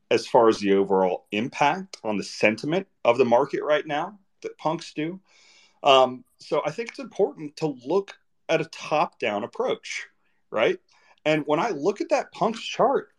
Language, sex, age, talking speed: English, male, 30-49, 180 wpm